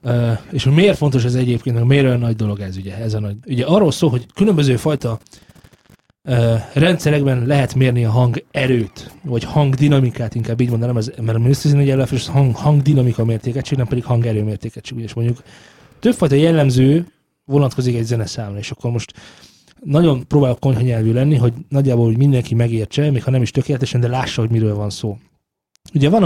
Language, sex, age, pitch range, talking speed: Hungarian, male, 30-49, 115-140 Hz, 180 wpm